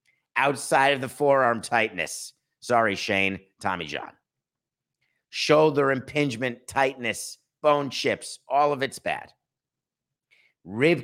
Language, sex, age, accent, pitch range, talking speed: English, male, 50-69, American, 100-135 Hz, 105 wpm